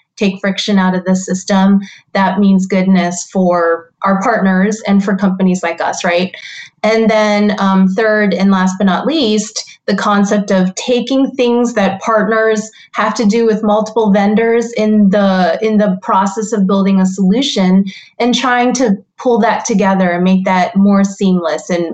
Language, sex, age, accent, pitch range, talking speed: English, female, 20-39, American, 185-220 Hz, 165 wpm